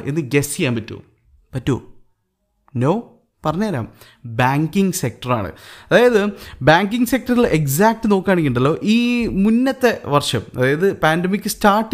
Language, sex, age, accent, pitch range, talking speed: Malayalam, male, 20-39, native, 130-205 Hz, 95 wpm